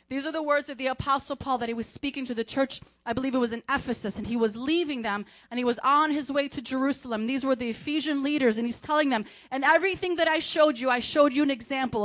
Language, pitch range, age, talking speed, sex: English, 240-300 Hz, 30-49, 270 wpm, female